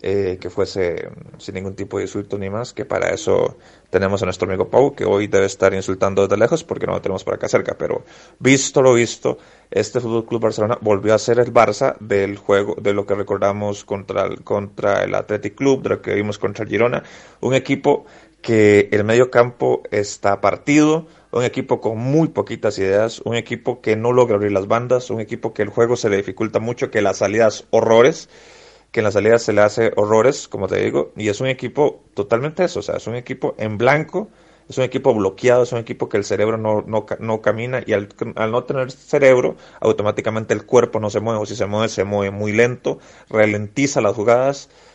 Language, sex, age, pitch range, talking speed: Spanish, male, 30-49, 105-130 Hz, 210 wpm